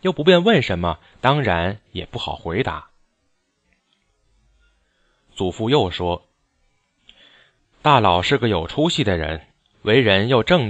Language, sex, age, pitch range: Chinese, male, 20-39, 90-140 Hz